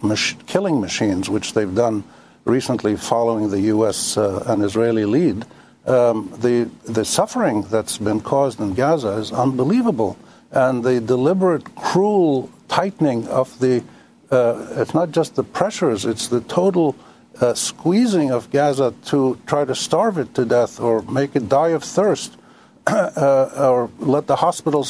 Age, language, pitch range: 60-79, English, 120-160 Hz